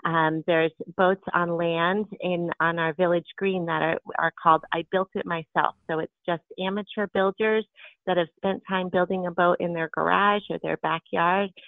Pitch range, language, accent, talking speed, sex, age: 160-185 Hz, English, American, 185 wpm, female, 30-49